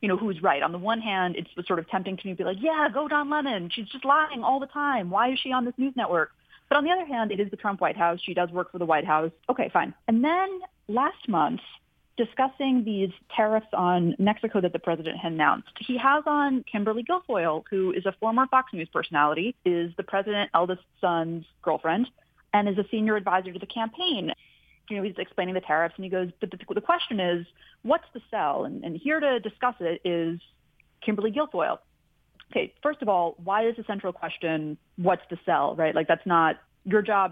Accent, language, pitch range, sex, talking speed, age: American, English, 175-245 Hz, female, 220 wpm, 30-49